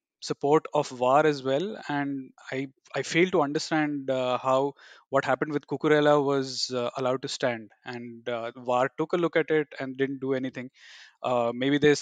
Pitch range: 130-150 Hz